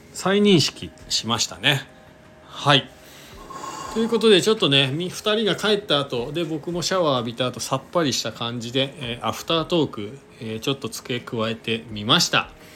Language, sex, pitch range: Japanese, male, 110-165 Hz